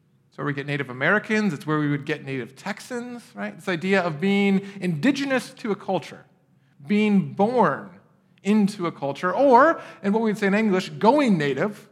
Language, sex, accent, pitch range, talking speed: English, male, American, 155-200 Hz, 180 wpm